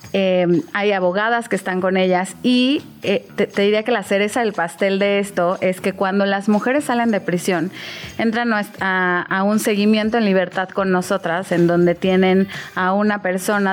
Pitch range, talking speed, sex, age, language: 180-215 Hz, 185 wpm, female, 30-49, Spanish